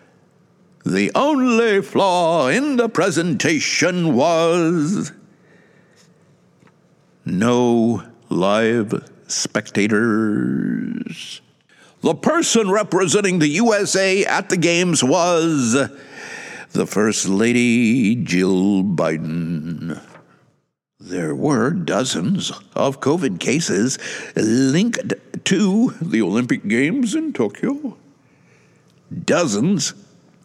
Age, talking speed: 60-79, 75 wpm